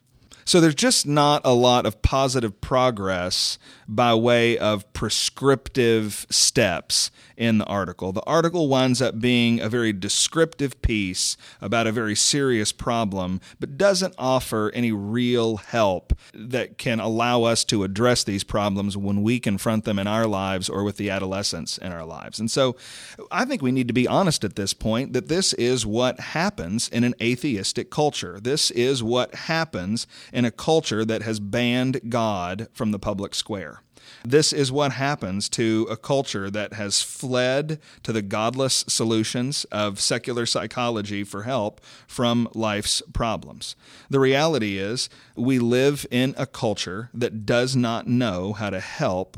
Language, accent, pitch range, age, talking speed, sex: English, American, 105-130 Hz, 40-59, 160 wpm, male